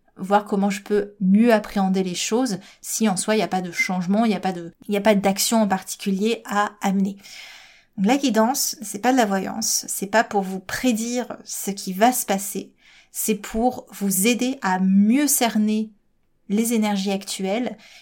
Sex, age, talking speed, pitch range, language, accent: female, 30-49, 195 wpm, 195-230 Hz, French, French